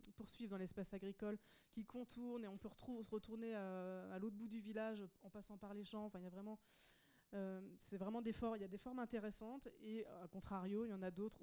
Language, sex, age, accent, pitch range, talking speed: French, female, 20-39, French, 175-210 Hz, 235 wpm